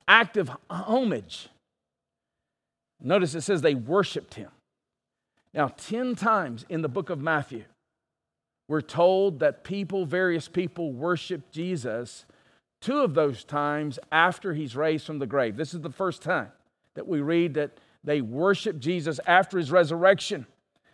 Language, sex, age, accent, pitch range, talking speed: English, male, 50-69, American, 155-215 Hz, 140 wpm